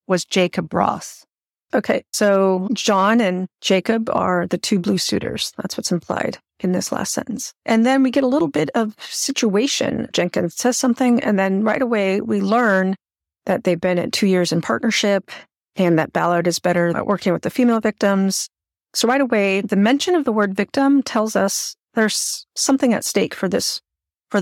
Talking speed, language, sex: 185 wpm, English, female